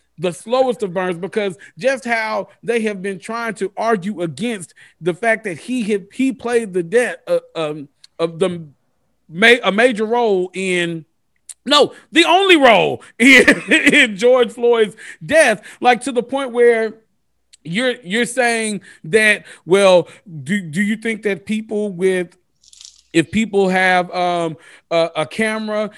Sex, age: male, 40-59